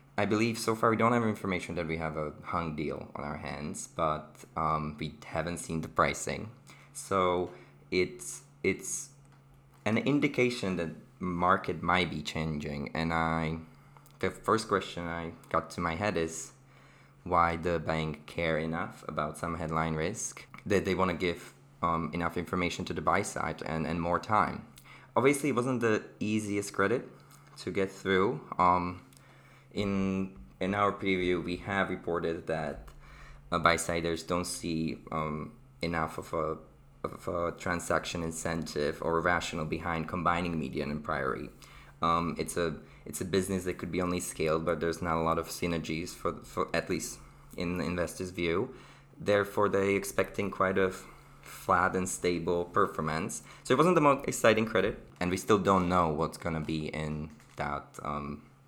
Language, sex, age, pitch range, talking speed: English, male, 20-39, 80-95 Hz, 165 wpm